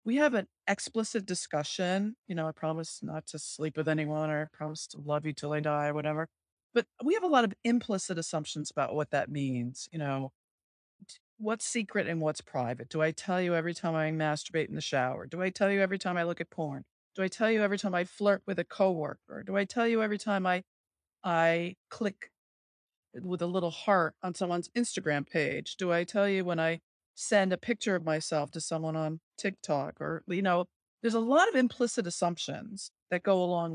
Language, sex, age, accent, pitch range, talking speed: English, female, 40-59, American, 160-225 Hz, 215 wpm